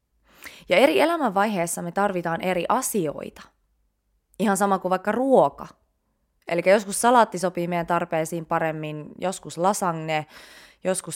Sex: female